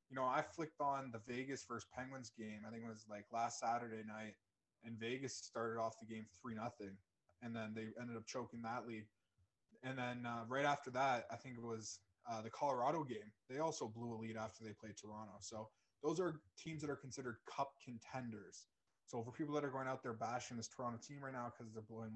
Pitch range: 115-140 Hz